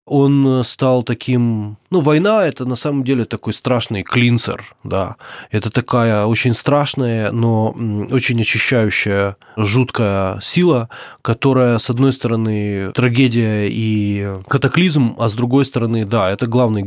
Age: 20-39